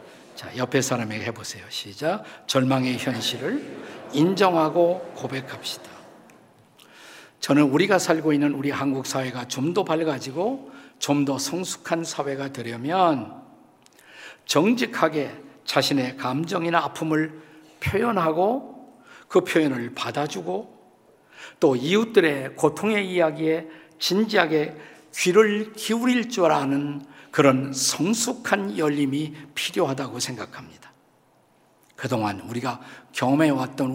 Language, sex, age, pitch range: Korean, male, 50-69, 135-175 Hz